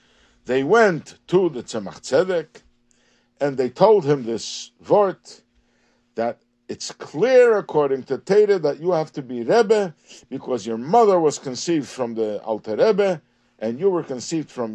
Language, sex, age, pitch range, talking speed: English, male, 60-79, 120-190 Hz, 155 wpm